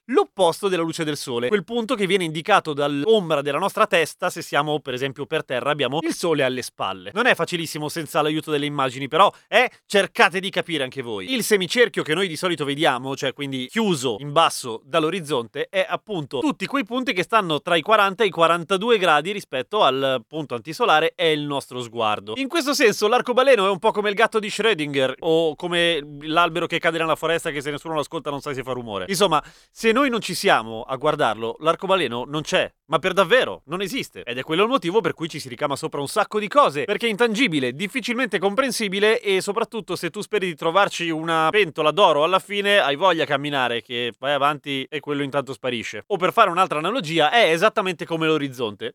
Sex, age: male, 30-49